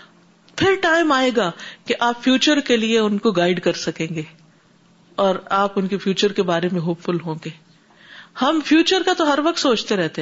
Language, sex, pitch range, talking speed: Urdu, female, 180-225 Hz, 200 wpm